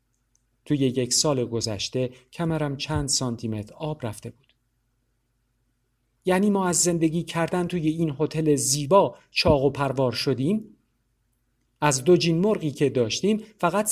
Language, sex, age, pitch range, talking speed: Persian, male, 50-69, 120-150 Hz, 130 wpm